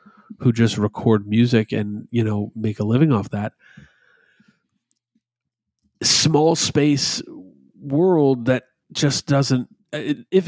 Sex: male